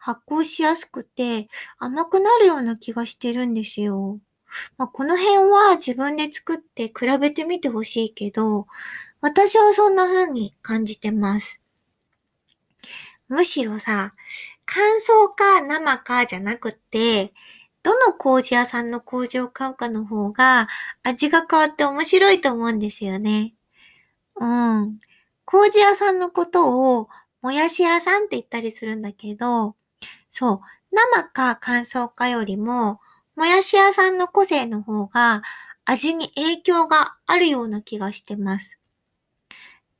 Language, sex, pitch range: Japanese, female, 225-355 Hz